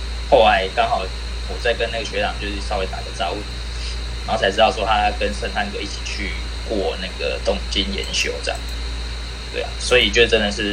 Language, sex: Chinese, male